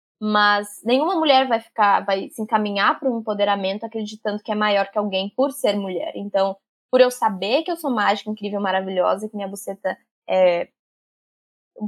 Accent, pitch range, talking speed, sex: Brazilian, 200-255 Hz, 175 wpm, female